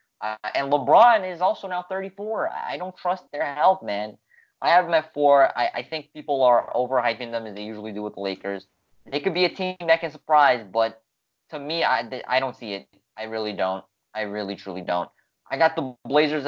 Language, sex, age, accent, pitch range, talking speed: English, male, 20-39, American, 105-135 Hz, 220 wpm